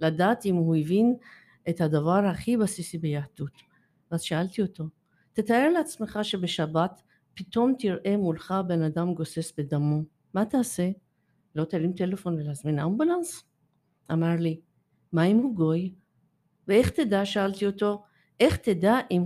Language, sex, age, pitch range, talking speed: Hebrew, female, 50-69, 160-210 Hz, 130 wpm